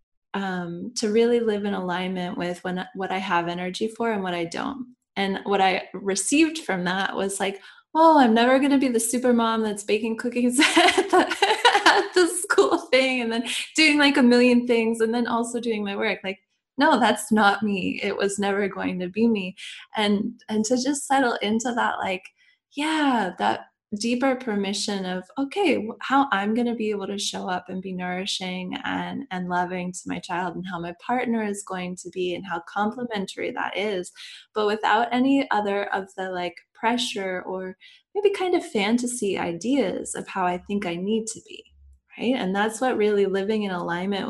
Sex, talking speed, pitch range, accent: female, 190 wpm, 185-255 Hz, American